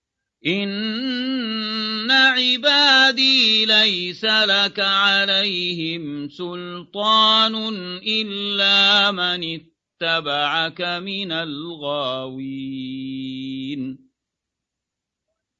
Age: 40-59